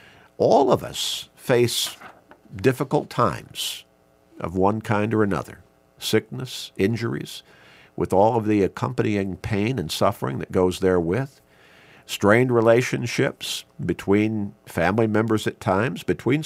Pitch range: 85-120 Hz